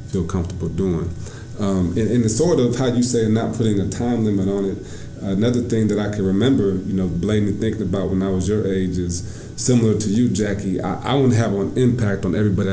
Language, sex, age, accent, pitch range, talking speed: English, male, 30-49, American, 100-120 Hz, 225 wpm